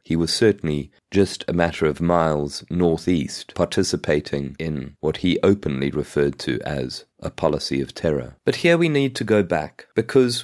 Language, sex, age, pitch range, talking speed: English, male, 30-49, 85-110 Hz, 165 wpm